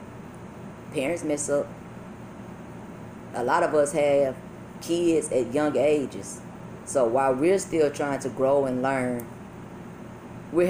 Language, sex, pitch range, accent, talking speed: English, female, 135-165 Hz, American, 125 wpm